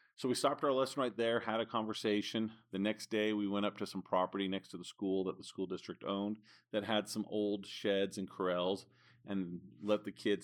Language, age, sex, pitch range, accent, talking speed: English, 40-59, male, 95-110 Hz, American, 225 wpm